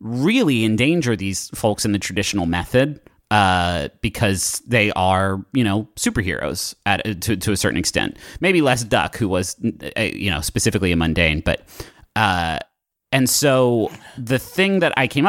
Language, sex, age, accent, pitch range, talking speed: English, male, 30-49, American, 95-125 Hz, 165 wpm